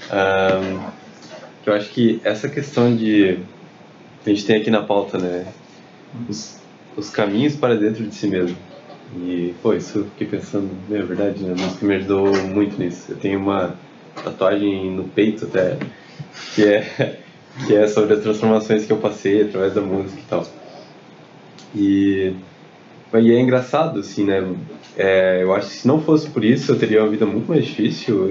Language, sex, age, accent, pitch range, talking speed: Portuguese, male, 20-39, Brazilian, 95-115 Hz, 170 wpm